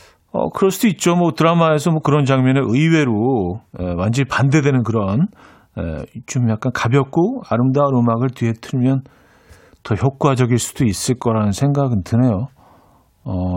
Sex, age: male, 40-59